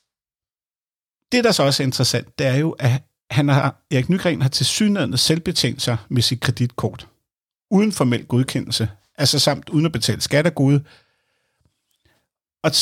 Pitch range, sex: 120-160 Hz, male